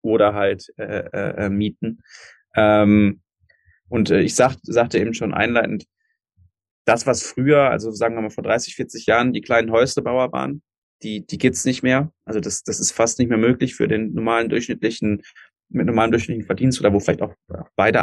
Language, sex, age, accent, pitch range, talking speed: German, male, 20-39, German, 95-110 Hz, 185 wpm